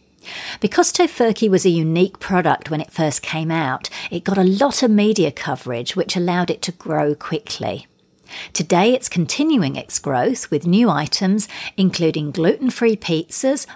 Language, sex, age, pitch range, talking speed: English, female, 50-69, 160-215 Hz, 155 wpm